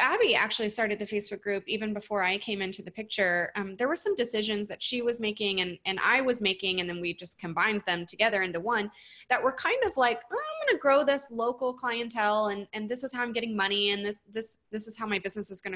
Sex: female